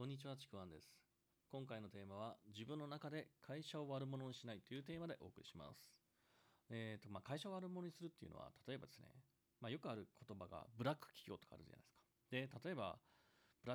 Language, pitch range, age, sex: Japanese, 110-165 Hz, 40-59, male